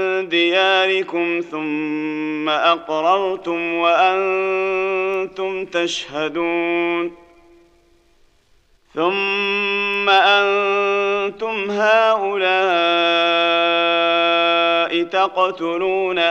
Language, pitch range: Arabic, 170-195 Hz